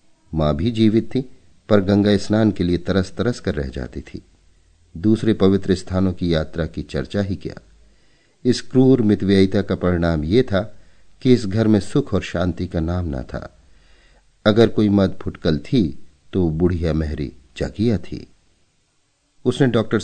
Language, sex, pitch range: Hindi, male, 80-105 Hz